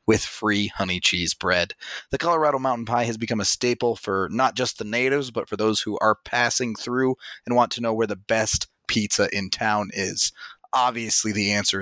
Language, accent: English, American